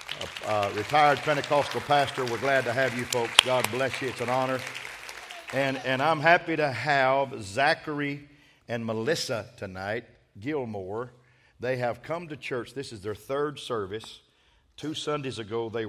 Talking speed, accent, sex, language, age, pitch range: 160 wpm, American, male, English, 50-69, 105-130 Hz